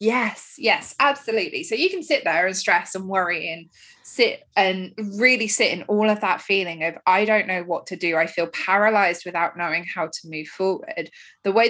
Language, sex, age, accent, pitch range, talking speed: English, female, 20-39, British, 180-230 Hz, 205 wpm